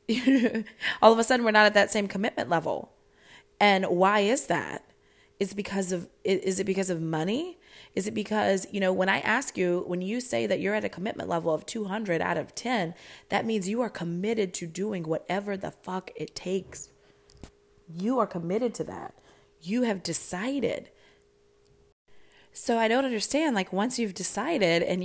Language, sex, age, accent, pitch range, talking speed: English, female, 20-39, American, 195-255 Hz, 175 wpm